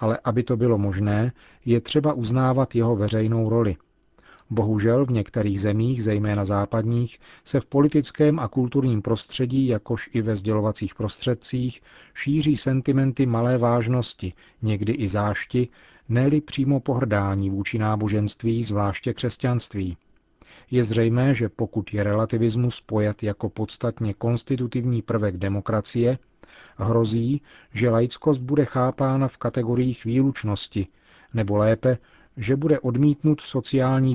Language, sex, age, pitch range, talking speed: Czech, male, 40-59, 110-130 Hz, 120 wpm